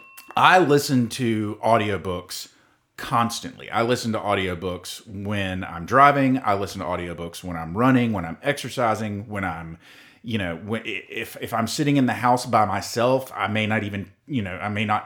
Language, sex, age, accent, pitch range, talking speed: English, male, 30-49, American, 100-125 Hz, 180 wpm